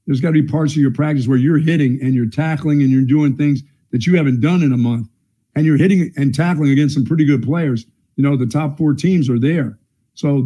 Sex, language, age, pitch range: male, English, 50-69, 130-155 Hz